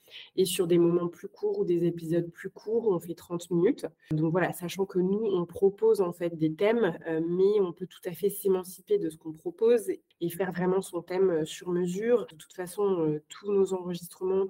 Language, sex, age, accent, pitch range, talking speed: French, female, 20-39, French, 160-190 Hz, 205 wpm